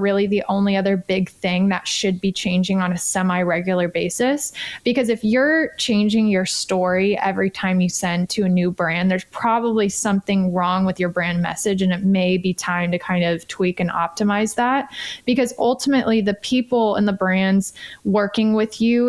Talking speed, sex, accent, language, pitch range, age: 180 wpm, female, American, English, 185-220 Hz, 20-39